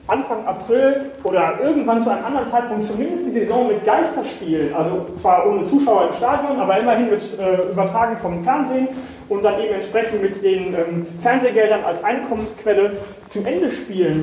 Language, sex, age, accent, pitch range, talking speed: German, male, 30-49, German, 175-225 Hz, 165 wpm